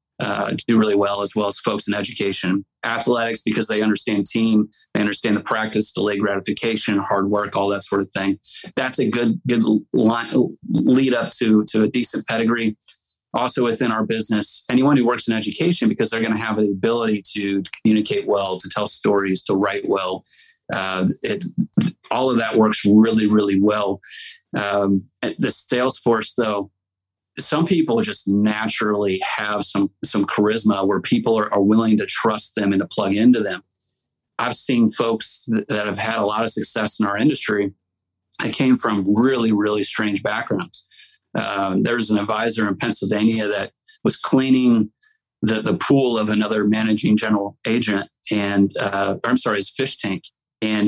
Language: English